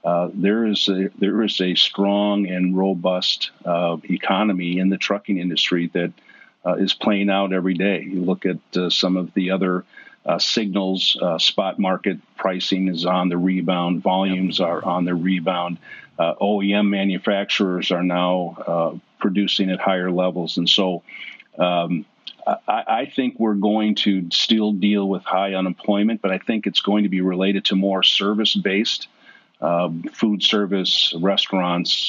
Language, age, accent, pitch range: English, 50-69, American, 90-100 Hz